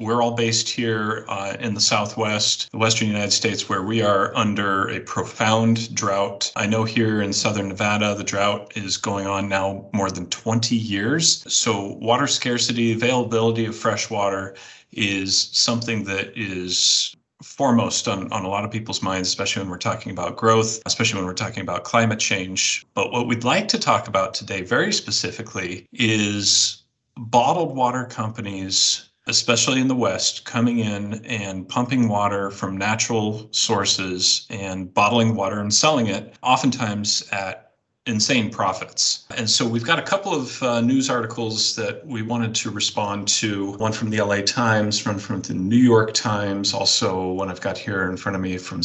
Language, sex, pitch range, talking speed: English, male, 100-120 Hz, 170 wpm